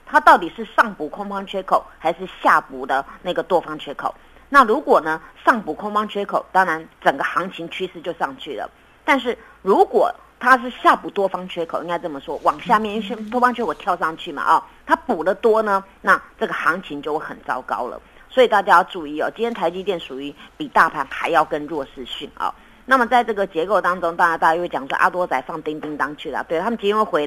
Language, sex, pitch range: Chinese, female, 165-235 Hz